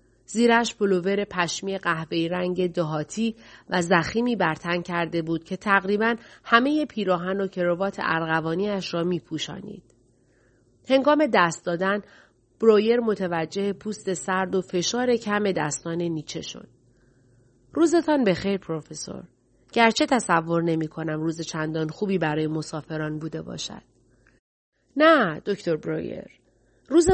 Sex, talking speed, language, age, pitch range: female, 115 wpm, Persian, 30-49, 160-210 Hz